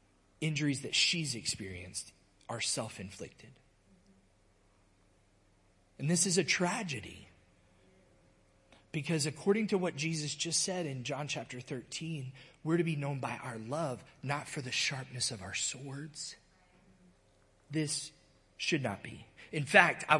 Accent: American